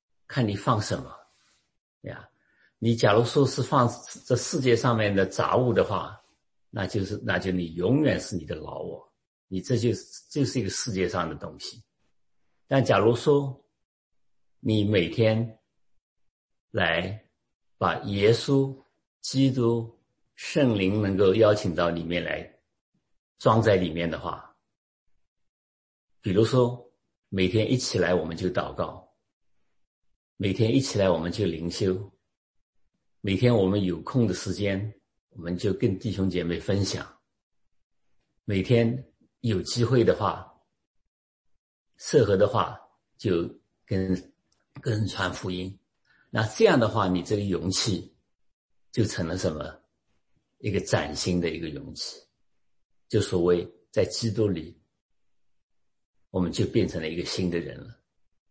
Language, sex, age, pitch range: English, male, 50-69, 90-115 Hz